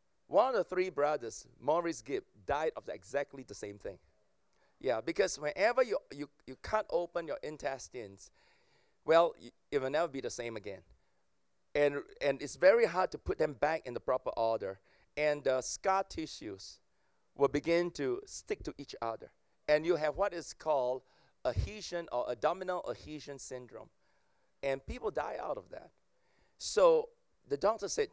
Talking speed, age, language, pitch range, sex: 170 wpm, 40-59, English, 125-195 Hz, male